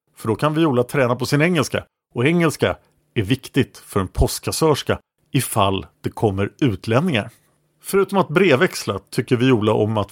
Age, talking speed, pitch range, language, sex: 50-69, 165 wpm, 115-155 Hz, English, male